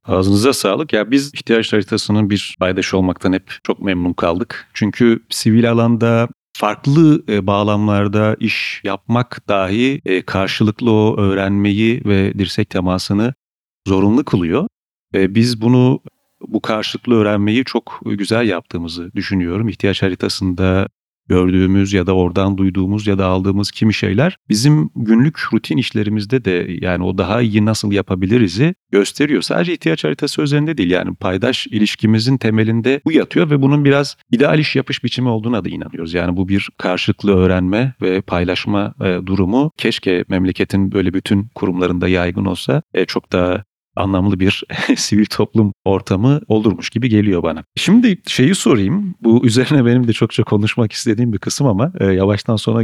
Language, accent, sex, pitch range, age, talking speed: Turkish, native, male, 95-120 Hz, 40-59, 145 wpm